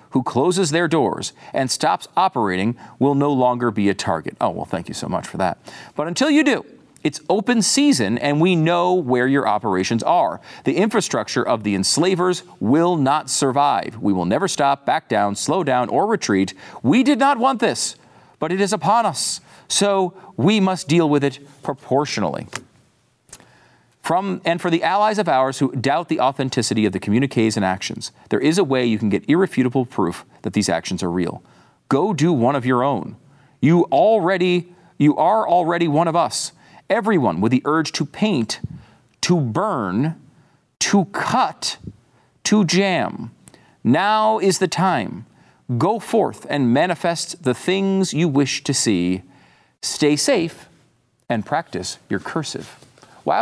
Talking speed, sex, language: 165 wpm, male, English